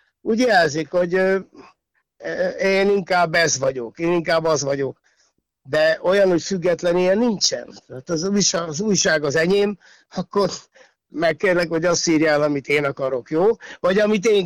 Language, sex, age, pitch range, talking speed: Hungarian, male, 60-79, 145-185 Hz, 145 wpm